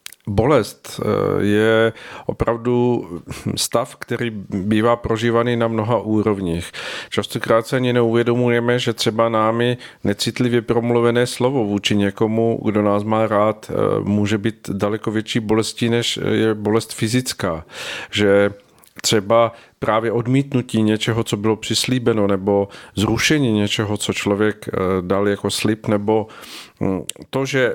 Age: 40-59